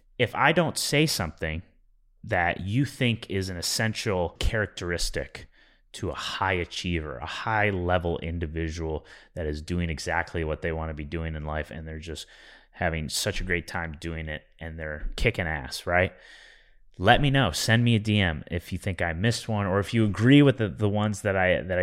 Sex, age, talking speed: male, 30-49, 195 wpm